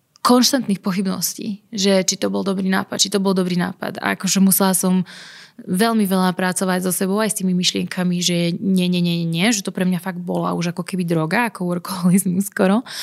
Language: Slovak